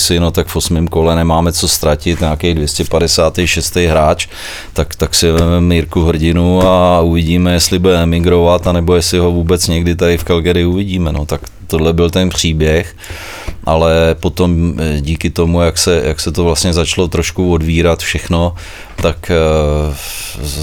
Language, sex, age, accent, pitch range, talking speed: English, male, 30-49, Czech, 80-85 Hz, 160 wpm